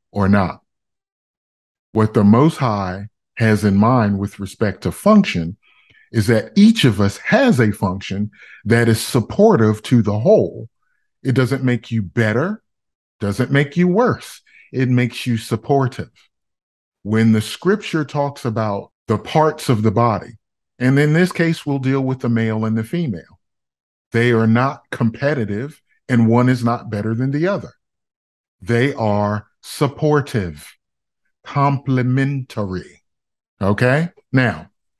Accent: American